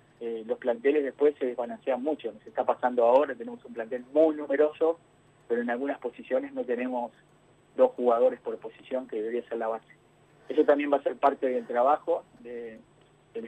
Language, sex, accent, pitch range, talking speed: Spanish, male, Argentinian, 120-160 Hz, 180 wpm